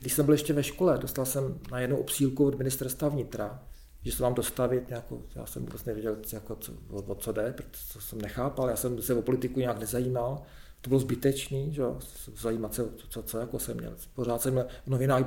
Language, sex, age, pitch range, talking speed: Czech, male, 40-59, 120-140 Hz, 210 wpm